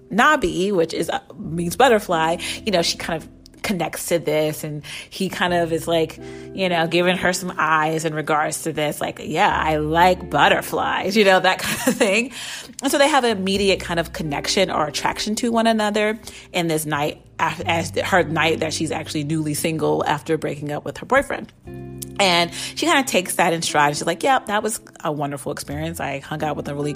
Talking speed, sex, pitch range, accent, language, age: 210 wpm, female, 155-195 Hz, American, English, 30-49